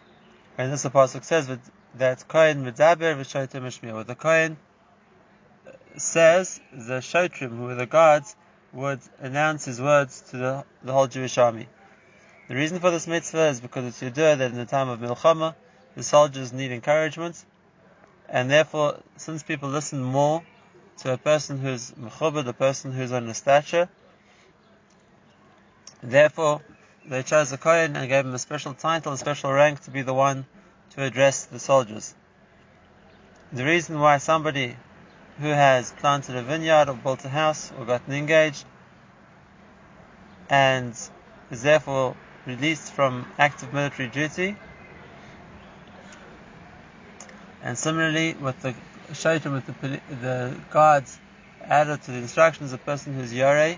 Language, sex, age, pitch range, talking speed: English, male, 20-39, 130-160 Hz, 140 wpm